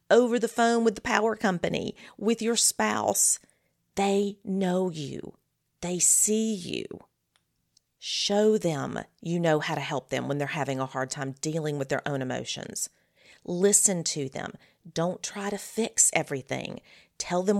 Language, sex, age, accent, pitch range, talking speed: English, female, 40-59, American, 155-210 Hz, 155 wpm